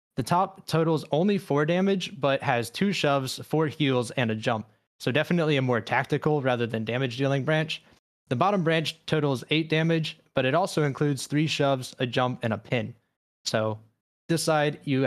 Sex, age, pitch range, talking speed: male, 20-39, 120-150 Hz, 185 wpm